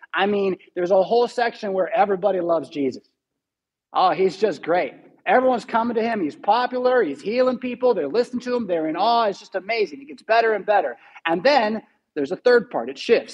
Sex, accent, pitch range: male, American, 165-230 Hz